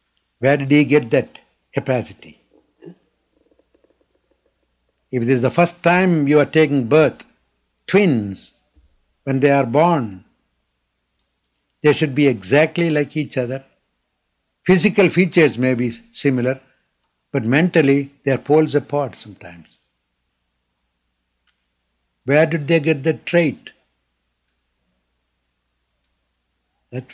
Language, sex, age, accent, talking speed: English, male, 60-79, Indian, 105 wpm